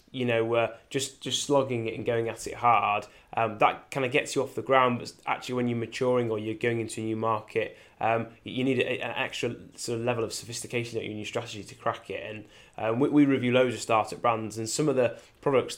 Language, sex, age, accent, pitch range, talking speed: English, male, 10-29, British, 110-130 Hz, 240 wpm